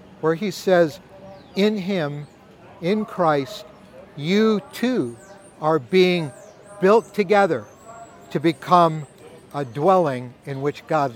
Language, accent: English, American